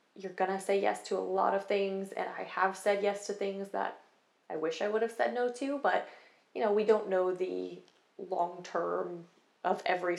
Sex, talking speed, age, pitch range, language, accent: female, 220 wpm, 20-39, 190-225 Hz, English, American